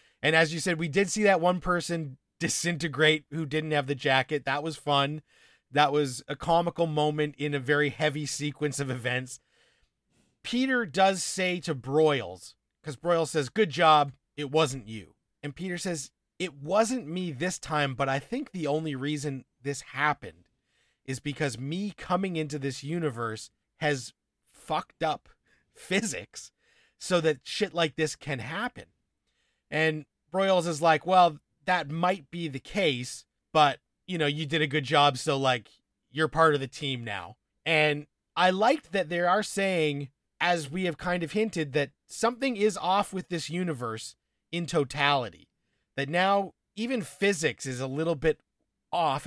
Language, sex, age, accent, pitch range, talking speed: English, male, 30-49, American, 140-175 Hz, 165 wpm